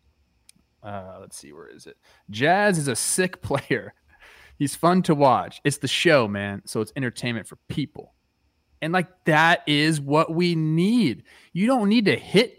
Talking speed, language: 170 wpm, English